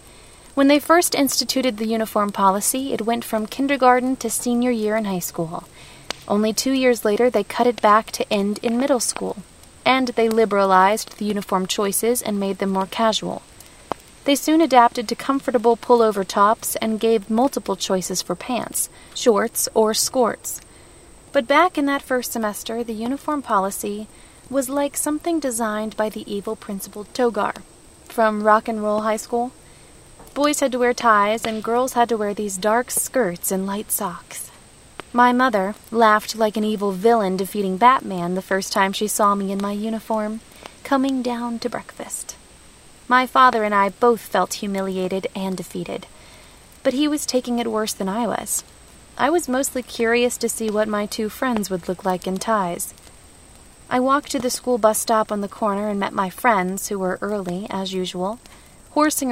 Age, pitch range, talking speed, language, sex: 30-49, 200-250 Hz, 175 wpm, English, female